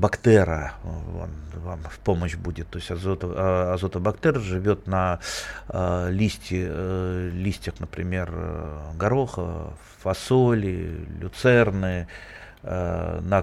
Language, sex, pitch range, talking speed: Russian, male, 90-110 Hz, 100 wpm